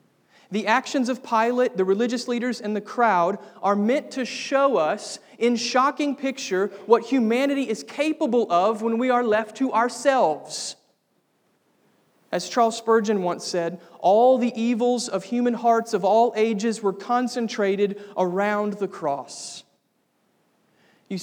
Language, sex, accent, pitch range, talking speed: English, male, American, 190-235 Hz, 140 wpm